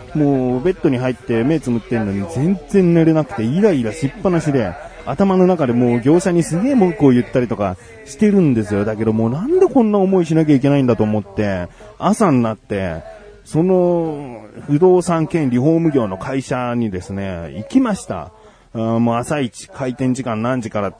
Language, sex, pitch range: Japanese, male, 105-145 Hz